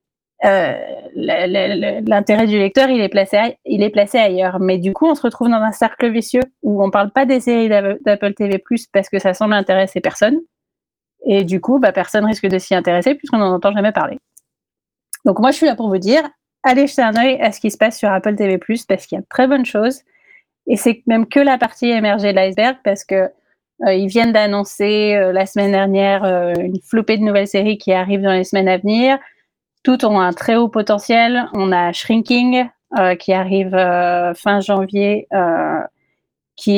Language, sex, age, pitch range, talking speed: French, female, 30-49, 195-250 Hz, 200 wpm